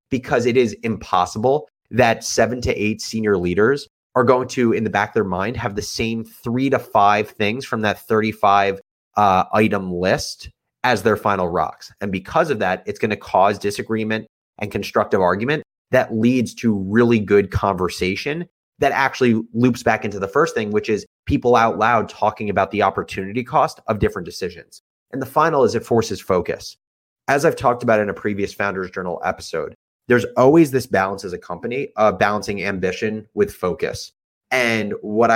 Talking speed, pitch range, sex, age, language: 180 wpm, 100-125 Hz, male, 30-49, English